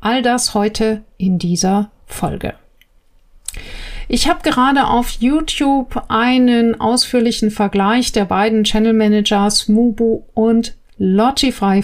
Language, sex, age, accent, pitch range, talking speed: German, female, 50-69, German, 210-245 Hz, 105 wpm